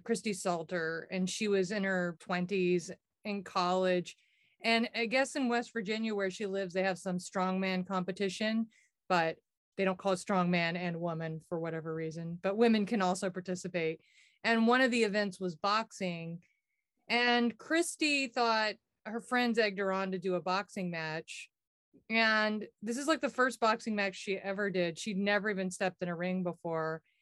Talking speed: 175 wpm